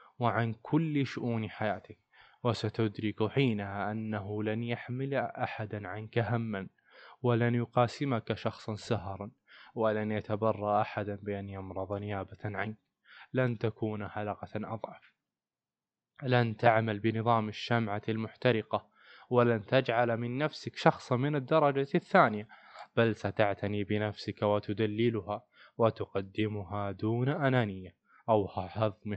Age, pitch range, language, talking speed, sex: 20-39, 105-120 Hz, Arabic, 100 wpm, male